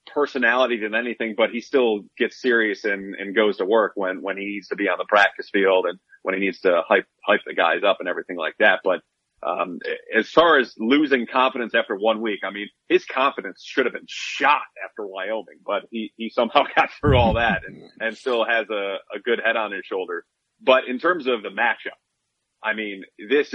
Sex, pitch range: male, 105-145 Hz